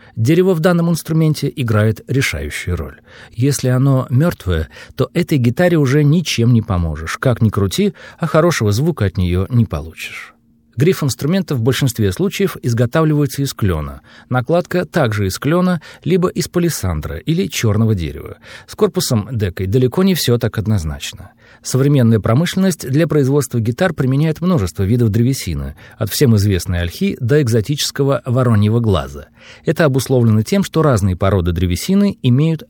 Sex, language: male, Russian